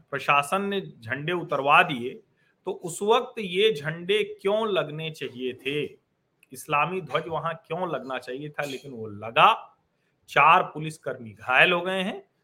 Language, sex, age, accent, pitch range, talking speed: Hindi, male, 40-59, native, 150-205 Hz, 145 wpm